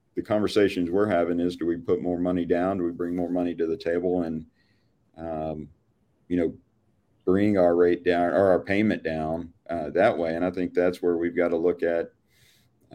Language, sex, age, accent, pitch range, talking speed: English, male, 40-59, American, 85-95 Hz, 205 wpm